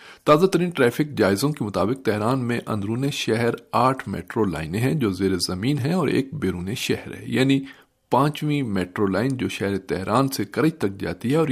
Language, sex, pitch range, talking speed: Urdu, male, 100-135 Hz, 190 wpm